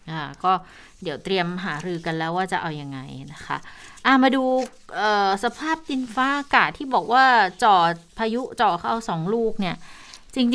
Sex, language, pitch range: female, Thai, 185-245 Hz